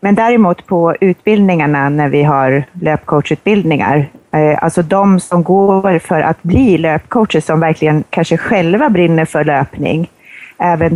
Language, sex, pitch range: English, female, 145-180 Hz